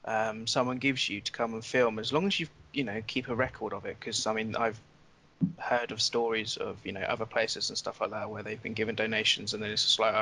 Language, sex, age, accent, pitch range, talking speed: English, male, 20-39, British, 115-140 Hz, 260 wpm